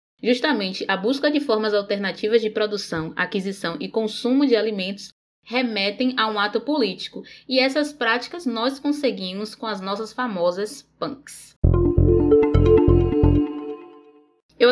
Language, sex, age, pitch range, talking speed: Portuguese, female, 20-39, 195-260 Hz, 120 wpm